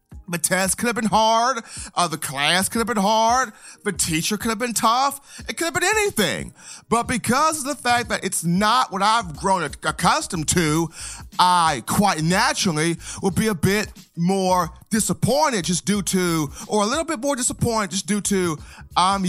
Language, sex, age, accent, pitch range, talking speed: English, male, 30-49, American, 165-220 Hz, 185 wpm